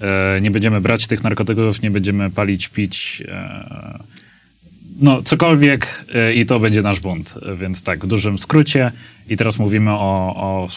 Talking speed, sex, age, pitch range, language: 145 wpm, male, 30-49, 100-115 Hz, Polish